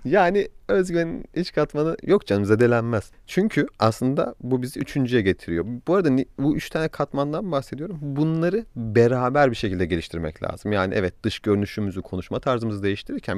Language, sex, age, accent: Turkish, male, 30-49, native